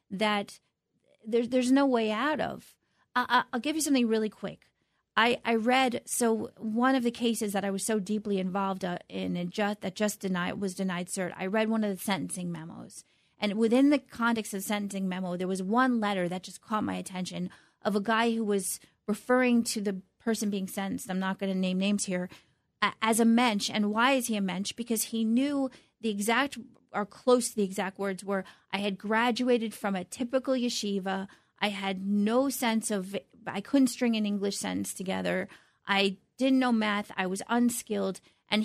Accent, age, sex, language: American, 30-49, female, English